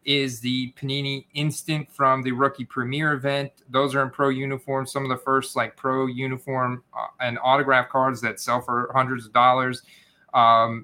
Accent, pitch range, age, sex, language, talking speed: American, 130-145 Hz, 30-49, male, English, 170 wpm